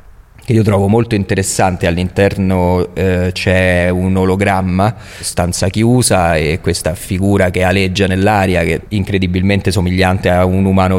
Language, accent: Italian, native